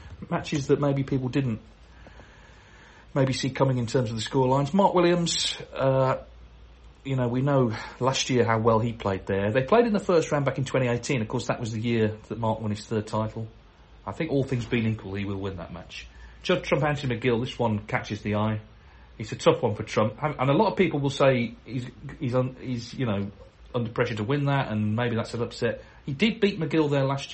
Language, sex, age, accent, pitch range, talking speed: English, male, 40-59, British, 105-135 Hz, 230 wpm